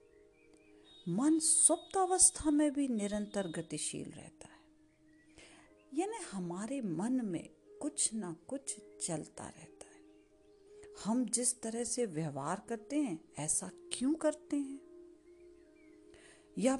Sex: female